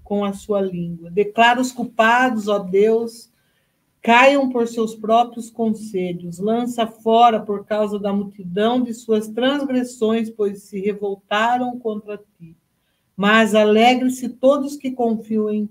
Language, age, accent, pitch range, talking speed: Portuguese, 50-69, Brazilian, 195-235 Hz, 130 wpm